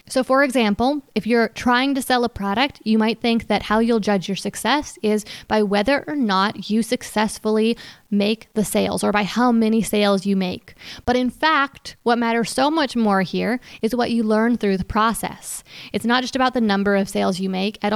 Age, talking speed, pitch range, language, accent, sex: 20-39, 210 wpm, 210-250 Hz, English, American, female